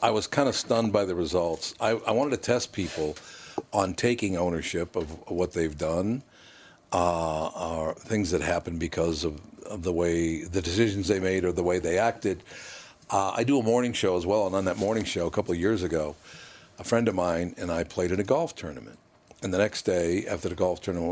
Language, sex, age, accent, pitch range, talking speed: English, male, 60-79, American, 90-120 Hz, 220 wpm